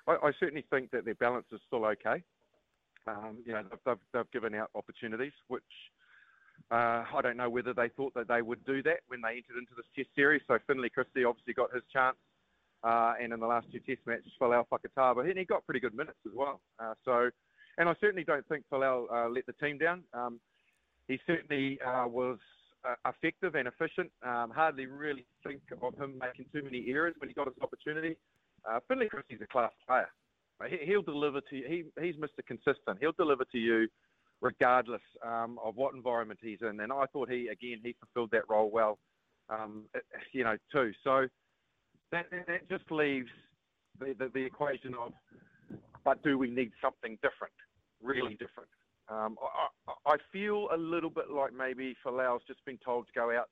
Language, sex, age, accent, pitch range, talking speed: English, male, 30-49, Australian, 120-145 Hz, 195 wpm